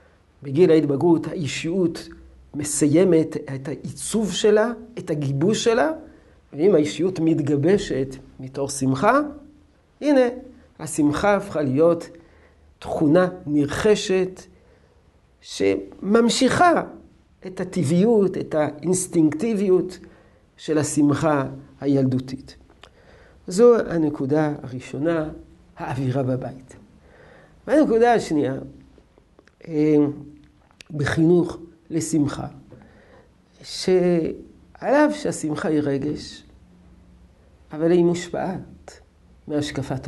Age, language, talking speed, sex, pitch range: 50-69, Hebrew, 70 wpm, male, 140-185 Hz